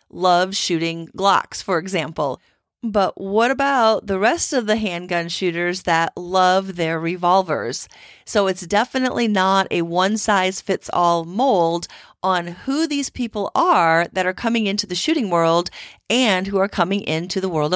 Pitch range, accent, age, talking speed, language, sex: 170-220 Hz, American, 40-59, 150 wpm, English, female